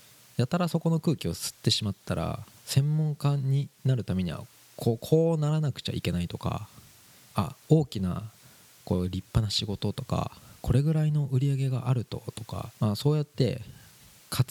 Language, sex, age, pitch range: Japanese, male, 20-39, 105-150 Hz